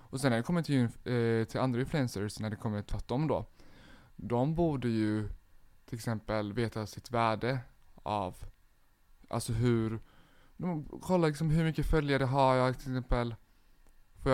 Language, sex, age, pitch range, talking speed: English, male, 20-39, 110-135 Hz, 145 wpm